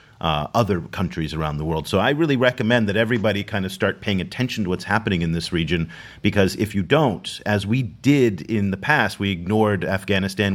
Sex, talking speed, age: male, 205 wpm, 40-59